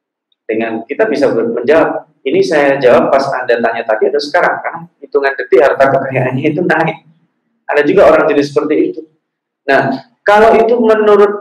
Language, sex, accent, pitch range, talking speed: Indonesian, male, native, 130-200 Hz, 160 wpm